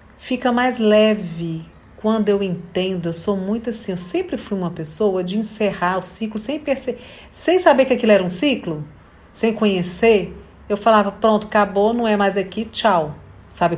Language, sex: Portuguese, female